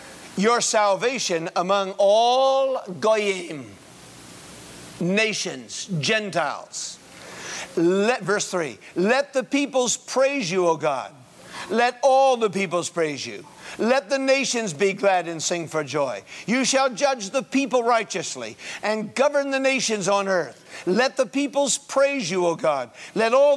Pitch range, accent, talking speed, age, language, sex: 180-265 Hz, American, 130 wpm, 50-69, English, male